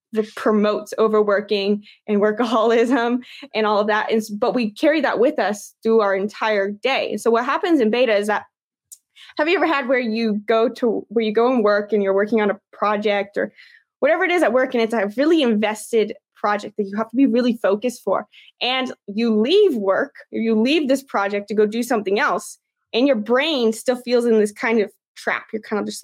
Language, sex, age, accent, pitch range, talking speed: English, female, 20-39, American, 210-265 Hz, 210 wpm